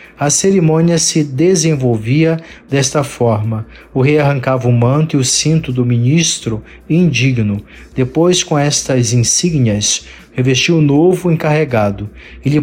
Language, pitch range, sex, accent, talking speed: Portuguese, 125-155 Hz, male, Brazilian, 135 wpm